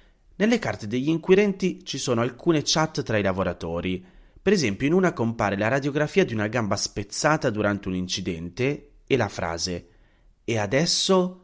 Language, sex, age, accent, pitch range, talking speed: Italian, male, 30-49, native, 100-140 Hz, 155 wpm